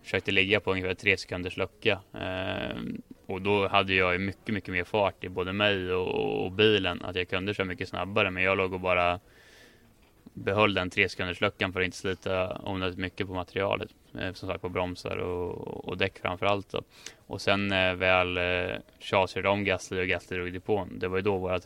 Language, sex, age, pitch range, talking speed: Swedish, male, 20-39, 90-100 Hz, 215 wpm